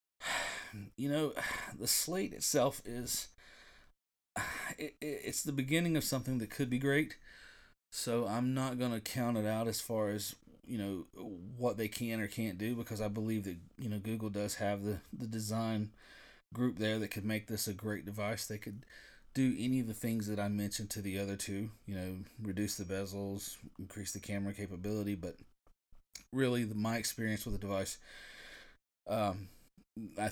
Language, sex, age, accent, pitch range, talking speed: English, male, 30-49, American, 100-110 Hz, 170 wpm